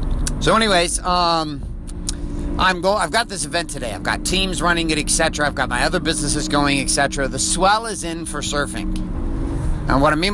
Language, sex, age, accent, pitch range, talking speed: English, male, 50-69, American, 120-165 Hz, 190 wpm